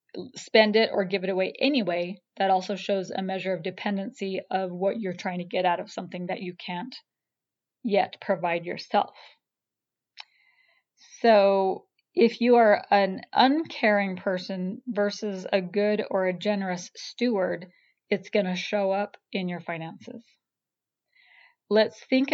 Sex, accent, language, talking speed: female, American, English, 140 wpm